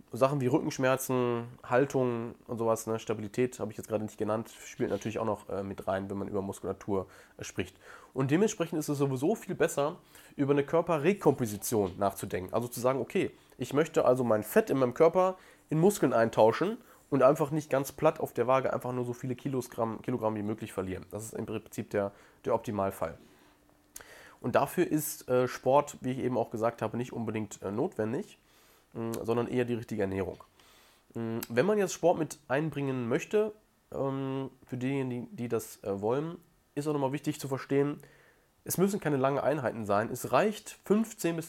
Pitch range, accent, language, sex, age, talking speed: 110-145 Hz, German, German, male, 20-39, 175 wpm